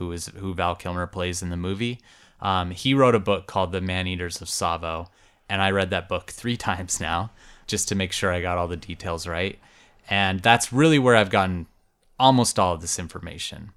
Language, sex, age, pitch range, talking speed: English, male, 20-39, 90-110 Hz, 215 wpm